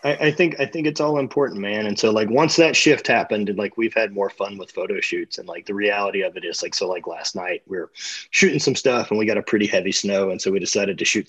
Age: 30-49